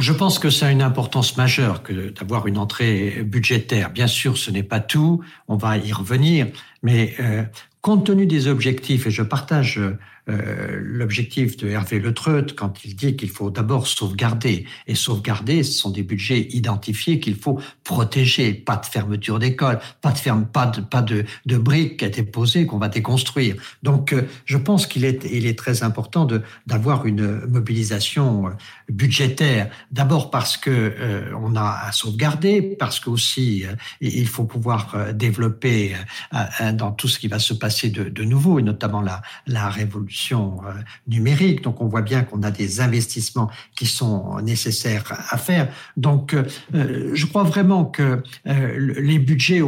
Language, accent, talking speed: French, French, 175 wpm